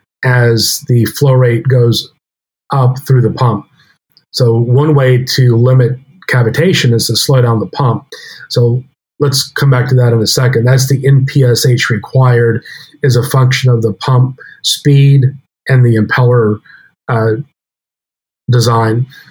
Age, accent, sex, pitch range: 40-59, American, male, 120-140 Hz